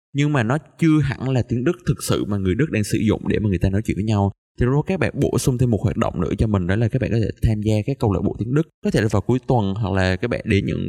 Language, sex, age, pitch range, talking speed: Vietnamese, male, 20-39, 100-130 Hz, 345 wpm